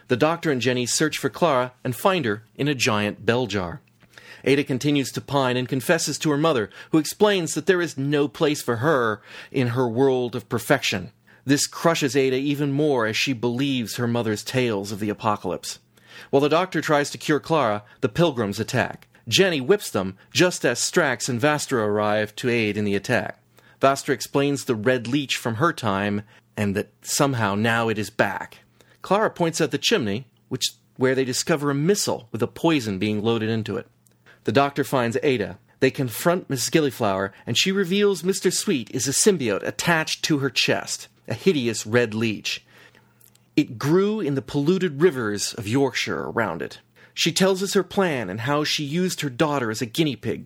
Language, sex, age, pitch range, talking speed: English, male, 30-49, 115-155 Hz, 190 wpm